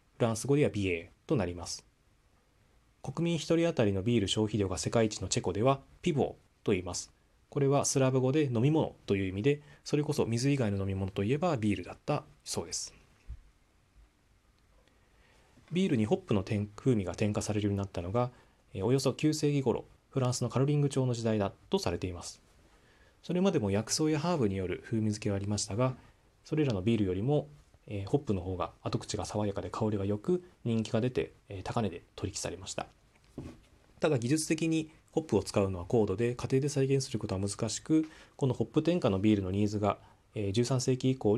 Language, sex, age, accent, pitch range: Japanese, male, 20-39, native, 100-140 Hz